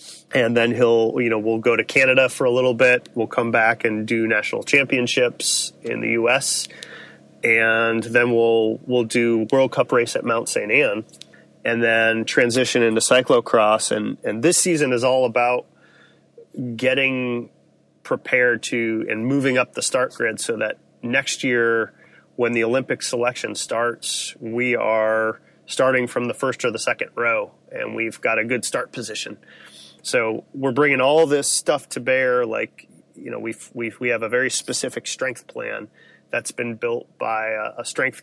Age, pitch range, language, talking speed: 30-49, 115-130 Hz, English, 170 wpm